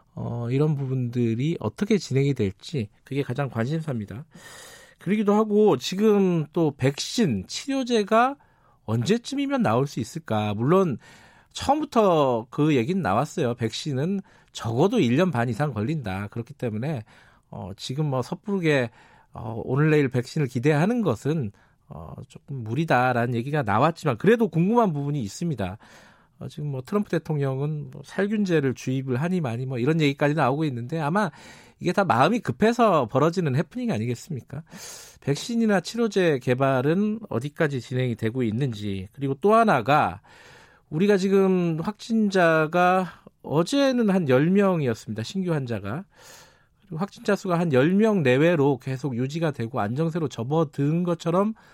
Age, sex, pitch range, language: 40-59, male, 130-195 Hz, Korean